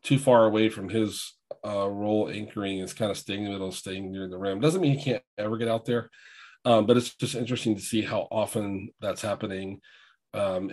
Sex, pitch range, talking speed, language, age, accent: male, 100-120 Hz, 220 wpm, English, 40-59, American